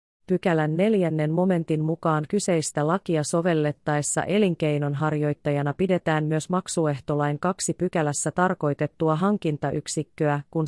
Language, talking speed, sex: Finnish, 95 wpm, female